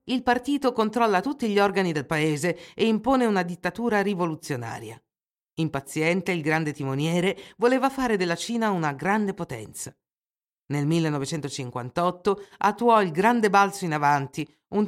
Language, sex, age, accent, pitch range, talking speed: Italian, female, 50-69, native, 150-215 Hz, 135 wpm